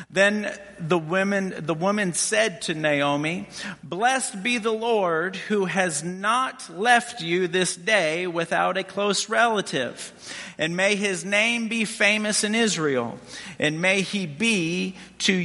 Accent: American